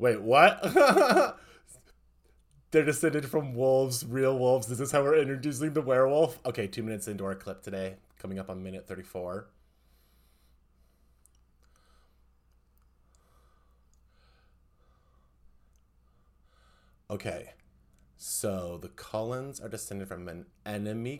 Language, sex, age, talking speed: English, male, 30-49, 105 wpm